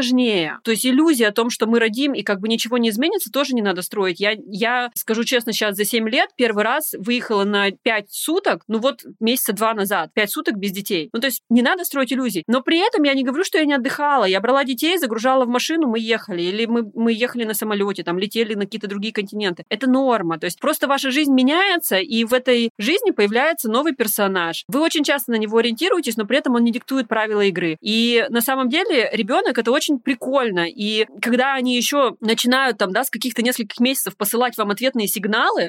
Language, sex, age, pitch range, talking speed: Russian, female, 30-49, 215-270 Hz, 220 wpm